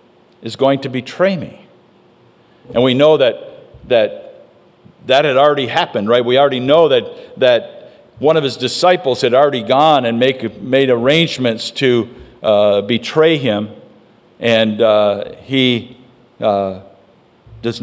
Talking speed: 135 wpm